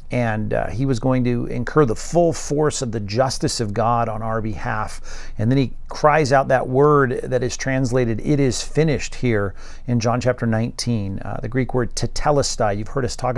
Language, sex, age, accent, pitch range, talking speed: English, male, 50-69, American, 115-135 Hz, 200 wpm